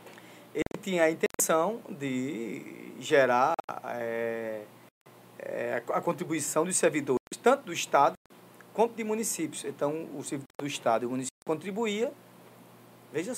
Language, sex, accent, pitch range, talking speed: Portuguese, male, Brazilian, 135-195 Hz, 120 wpm